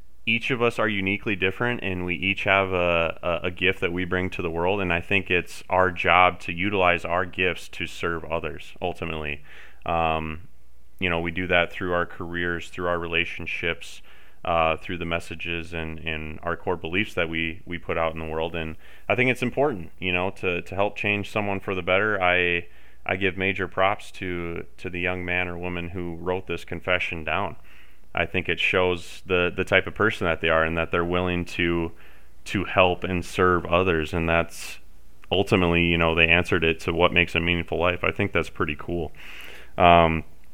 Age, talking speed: 30-49, 205 wpm